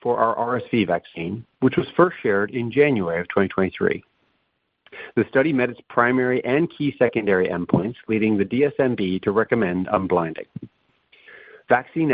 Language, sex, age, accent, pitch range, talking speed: English, male, 60-79, American, 100-135 Hz, 140 wpm